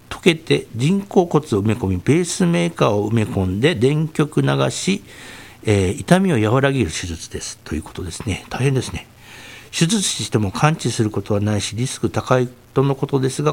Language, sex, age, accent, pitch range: Japanese, male, 60-79, native, 110-150 Hz